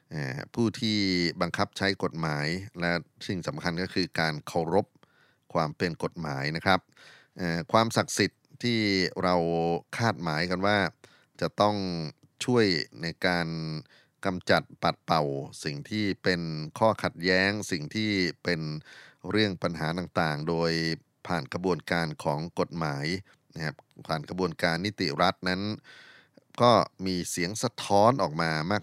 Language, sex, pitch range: Thai, male, 80-100 Hz